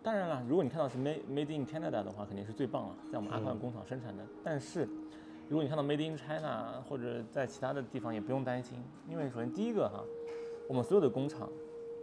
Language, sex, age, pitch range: Chinese, male, 20-39, 105-155 Hz